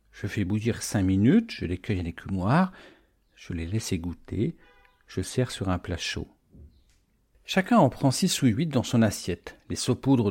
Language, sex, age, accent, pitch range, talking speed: French, male, 50-69, French, 95-140 Hz, 180 wpm